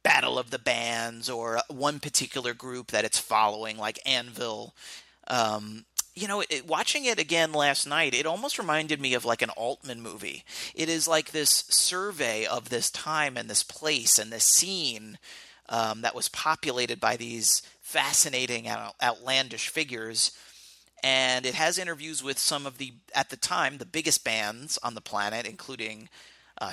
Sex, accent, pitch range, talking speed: male, American, 115-155 Hz, 160 wpm